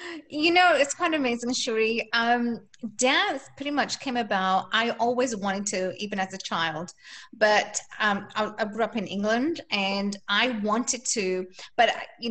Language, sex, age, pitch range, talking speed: English, female, 30-49, 200-250 Hz, 165 wpm